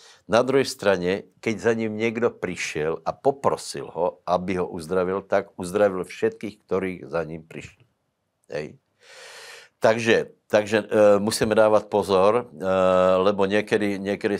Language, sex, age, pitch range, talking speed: Slovak, male, 60-79, 85-105 Hz, 135 wpm